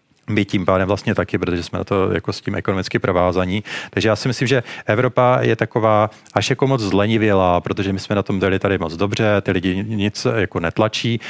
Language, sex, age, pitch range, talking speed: Czech, male, 40-59, 100-125 Hz, 210 wpm